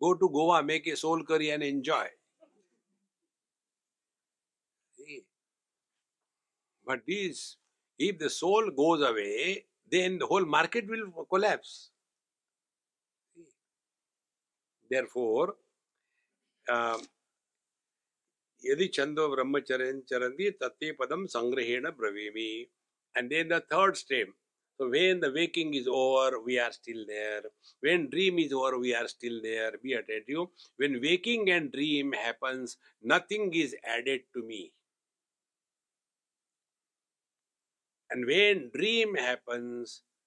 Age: 60-79